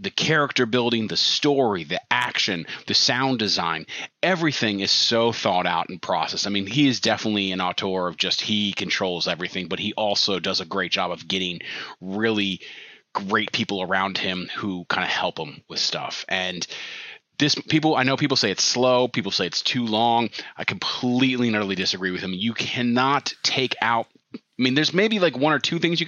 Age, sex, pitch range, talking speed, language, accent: 30-49, male, 95-130 Hz, 195 wpm, English, American